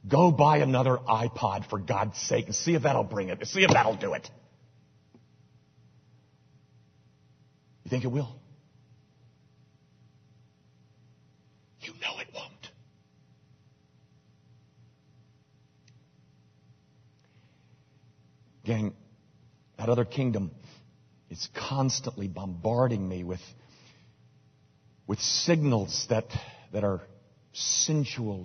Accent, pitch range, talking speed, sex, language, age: American, 90-125 Hz, 90 wpm, male, English, 50-69